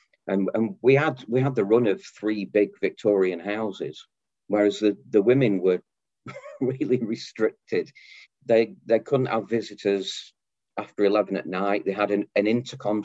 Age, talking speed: 40-59, 155 wpm